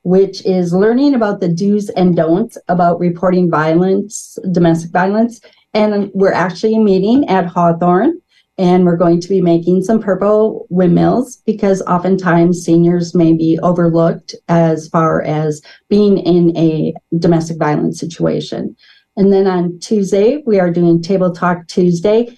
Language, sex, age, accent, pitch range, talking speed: English, female, 40-59, American, 170-210 Hz, 140 wpm